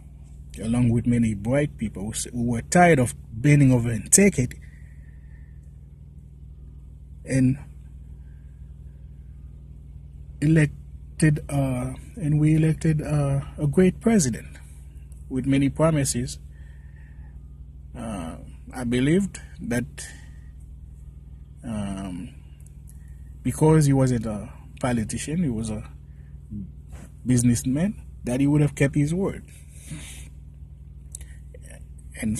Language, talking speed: English, 90 wpm